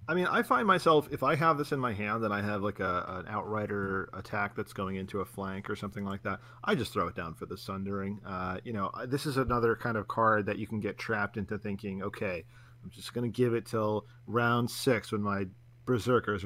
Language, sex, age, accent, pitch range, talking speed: English, male, 40-59, American, 100-120 Hz, 240 wpm